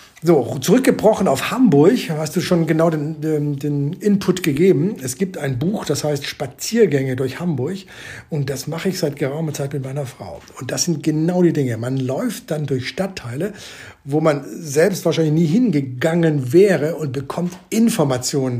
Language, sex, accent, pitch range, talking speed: German, male, German, 140-180 Hz, 170 wpm